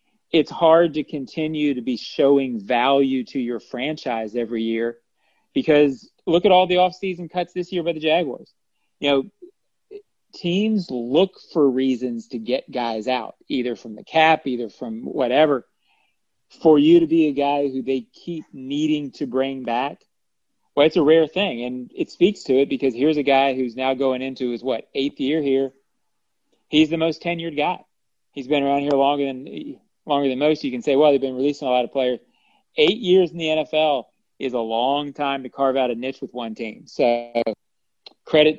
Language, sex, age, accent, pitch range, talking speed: English, male, 30-49, American, 130-160 Hz, 195 wpm